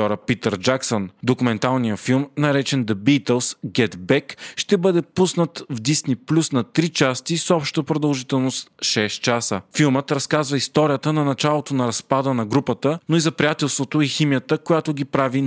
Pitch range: 120-150 Hz